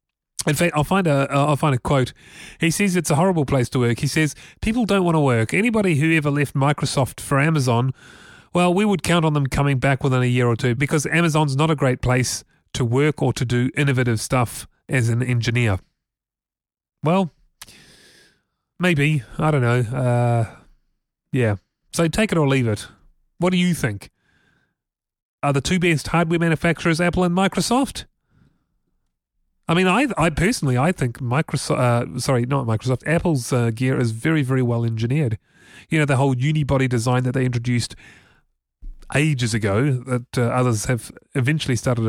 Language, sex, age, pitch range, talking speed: English, male, 30-49, 125-160 Hz, 175 wpm